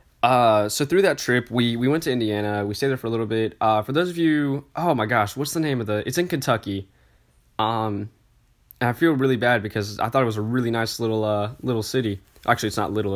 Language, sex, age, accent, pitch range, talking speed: English, male, 10-29, American, 105-130 Hz, 250 wpm